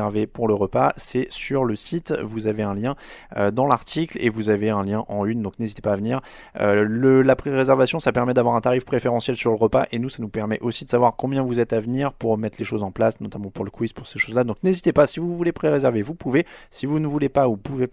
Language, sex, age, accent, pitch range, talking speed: French, male, 20-39, French, 110-145 Hz, 275 wpm